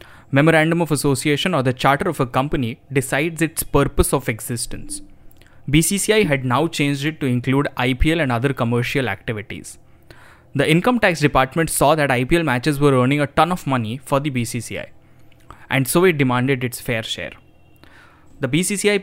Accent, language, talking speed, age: Indian, English, 165 wpm, 10-29